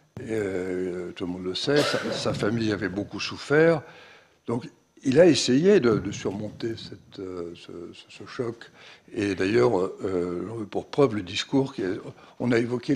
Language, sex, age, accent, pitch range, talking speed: French, male, 60-79, French, 100-140 Hz, 160 wpm